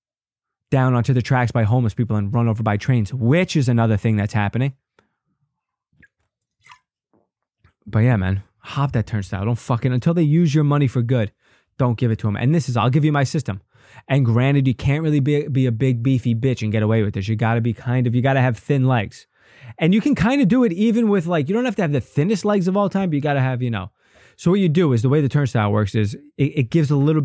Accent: American